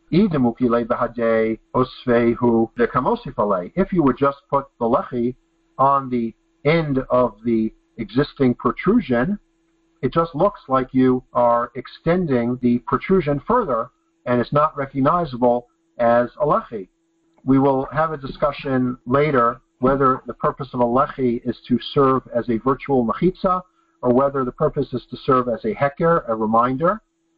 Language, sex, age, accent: English, male, 50-69, American